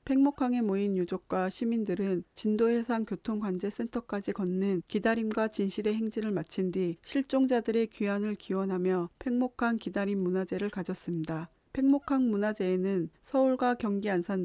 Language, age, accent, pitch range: Korean, 40-59, native, 190-230 Hz